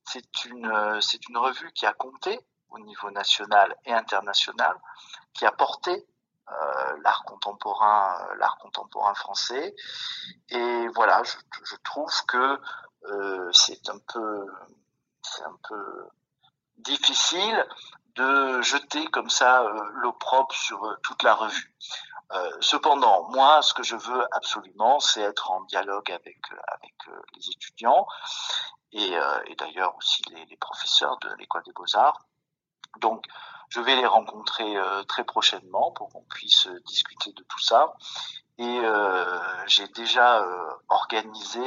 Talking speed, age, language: 140 wpm, 50-69, French